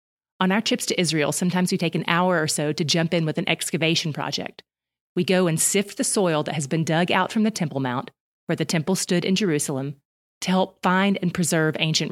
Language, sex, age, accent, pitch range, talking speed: English, female, 30-49, American, 165-205 Hz, 230 wpm